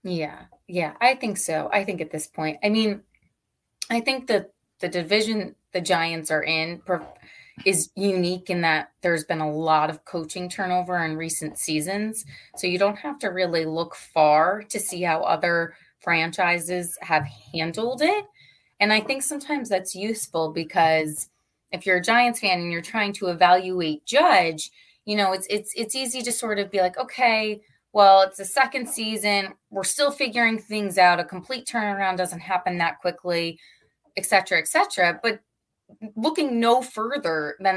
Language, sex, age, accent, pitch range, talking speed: English, female, 20-39, American, 170-225 Hz, 170 wpm